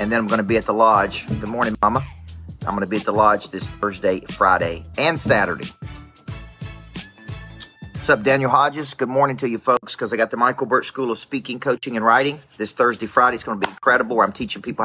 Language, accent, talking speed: English, American, 225 wpm